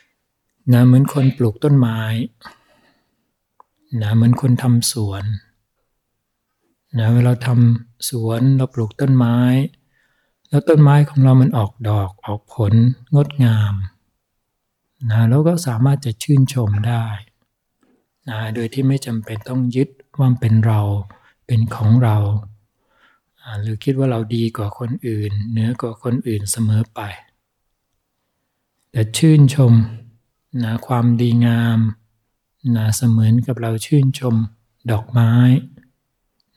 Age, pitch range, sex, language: 60-79, 110-130 Hz, male, Thai